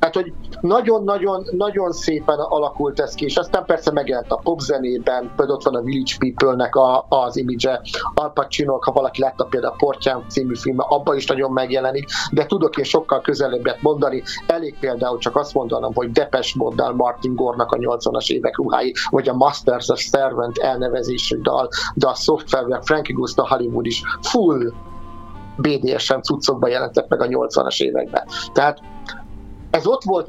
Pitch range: 120-160 Hz